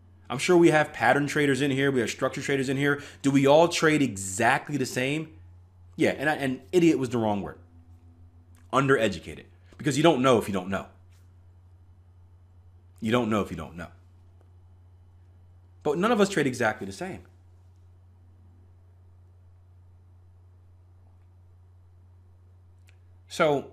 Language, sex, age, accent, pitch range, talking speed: English, male, 30-49, American, 90-125 Hz, 140 wpm